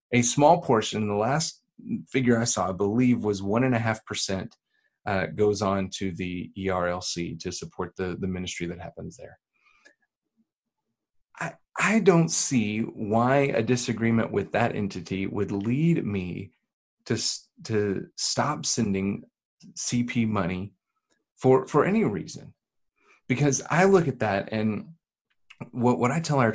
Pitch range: 95-120 Hz